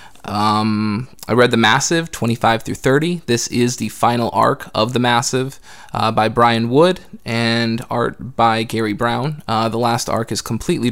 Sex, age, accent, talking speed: male, 20-39, American, 170 wpm